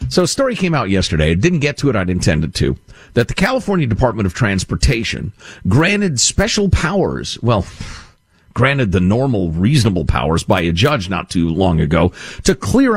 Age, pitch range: 50-69, 100-165 Hz